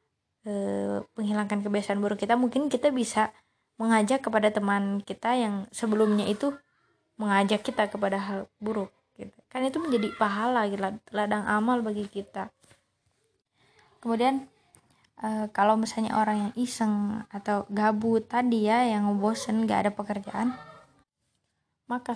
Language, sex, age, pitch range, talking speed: Indonesian, female, 20-39, 205-235 Hz, 115 wpm